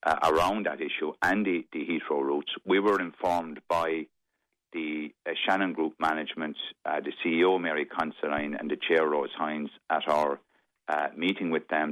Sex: male